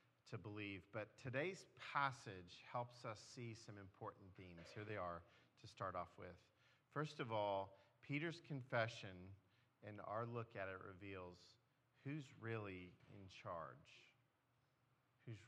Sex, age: male, 40-59